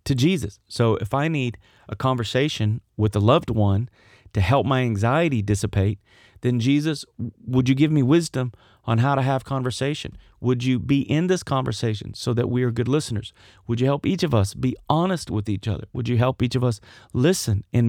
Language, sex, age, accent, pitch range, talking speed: English, male, 30-49, American, 100-135 Hz, 200 wpm